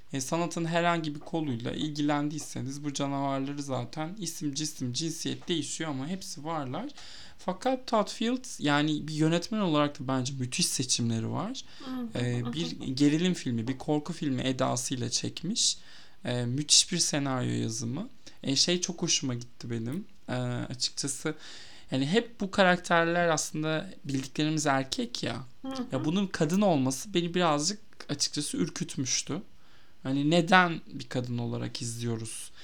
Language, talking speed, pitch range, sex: Turkish, 130 wpm, 130-170 Hz, male